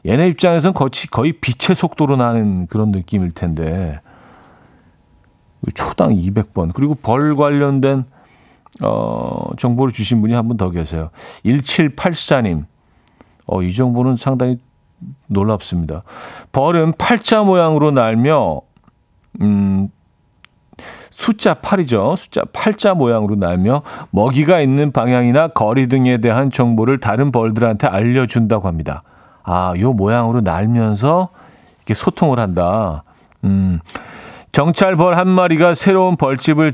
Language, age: Korean, 40-59